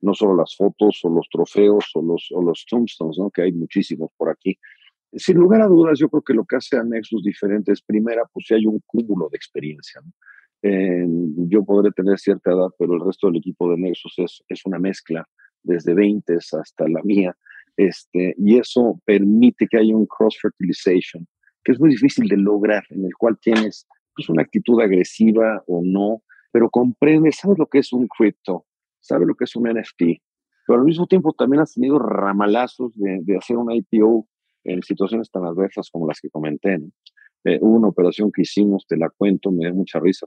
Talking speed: 205 wpm